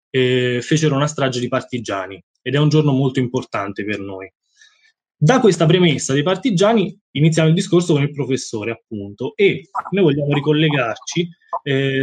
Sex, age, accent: male, 20-39, native